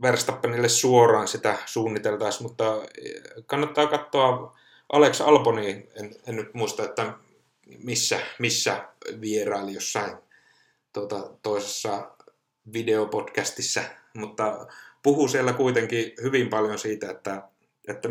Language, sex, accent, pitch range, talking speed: Finnish, male, native, 105-130 Hz, 100 wpm